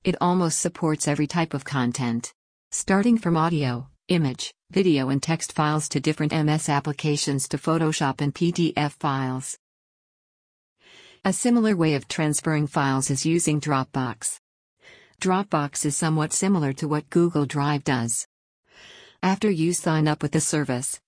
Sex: female